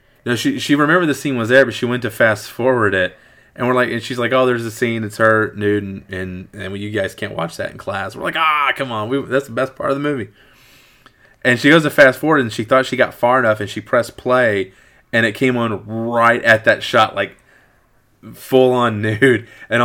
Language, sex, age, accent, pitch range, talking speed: English, male, 20-39, American, 110-160 Hz, 250 wpm